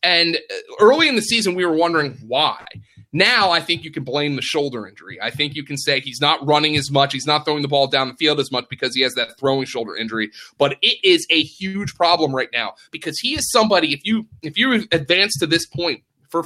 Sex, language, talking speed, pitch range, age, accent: male, English, 235 wpm, 150-215 Hz, 30-49, American